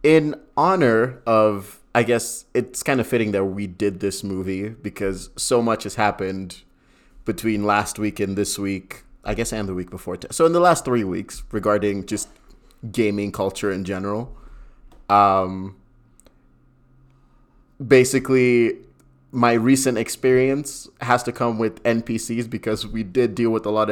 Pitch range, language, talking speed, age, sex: 100-125 Hz, English, 155 wpm, 30-49, male